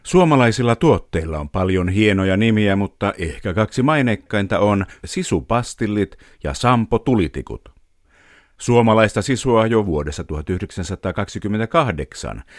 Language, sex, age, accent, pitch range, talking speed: Finnish, male, 50-69, native, 90-120 Hz, 95 wpm